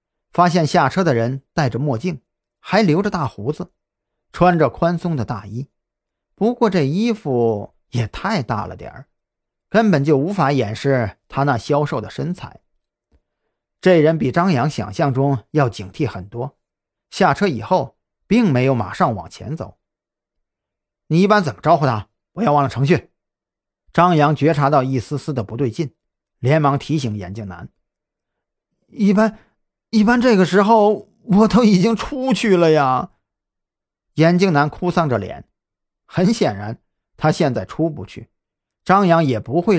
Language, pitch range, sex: Chinese, 115-175 Hz, male